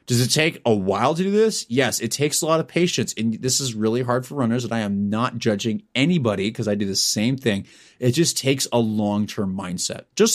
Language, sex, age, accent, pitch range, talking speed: English, male, 30-49, American, 115-165 Hz, 240 wpm